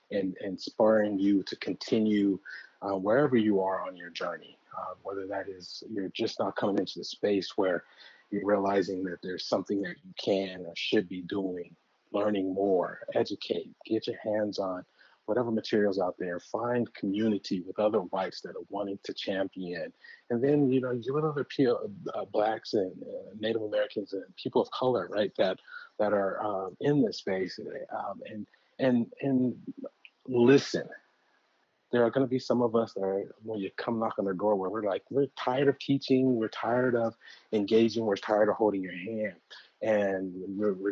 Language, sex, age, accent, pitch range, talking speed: English, male, 40-59, American, 95-125 Hz, 185 wpm